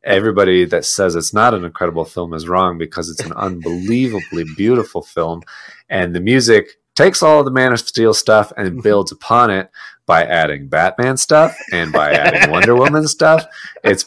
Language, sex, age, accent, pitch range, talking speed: English, male, 30-49, American, 85-115 Hz, 175 wpm